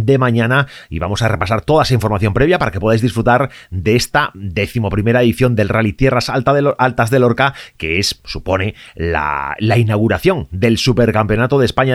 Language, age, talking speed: Spanish, 30-49, 185 wpm